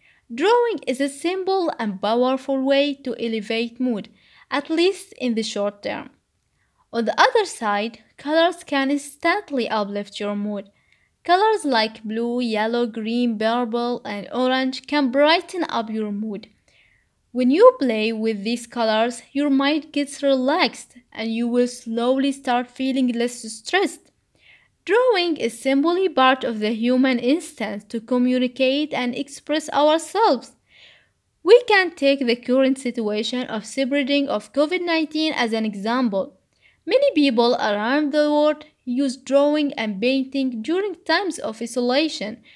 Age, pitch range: 20-39, 230-300 Hz